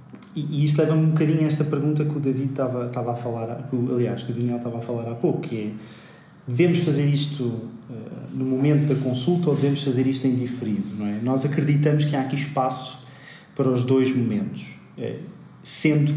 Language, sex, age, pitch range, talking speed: Portuguese, male, 20-39, 115-140 Hz, 195 wpm